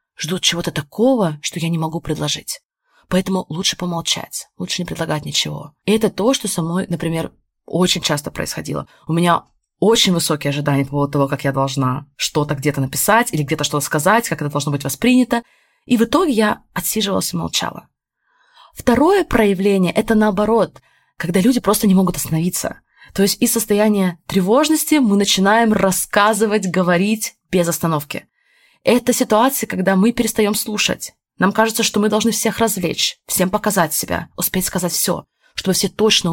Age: 20-39